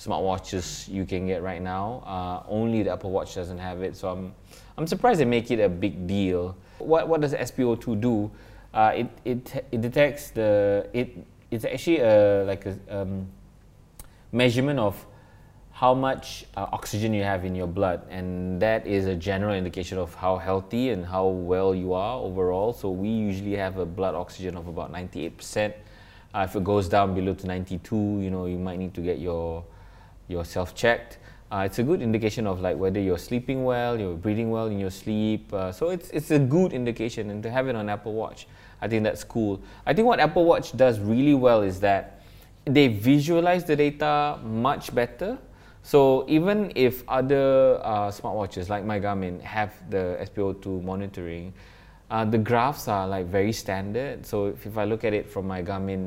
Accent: Malaysian